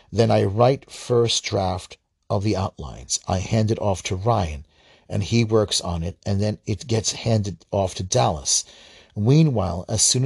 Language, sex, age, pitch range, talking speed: English, male, 40-59, 95-120 Hz, 175 wpm